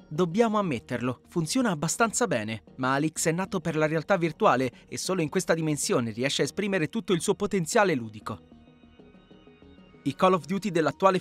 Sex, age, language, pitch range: male, 30-49, Italian, 150-205 Hz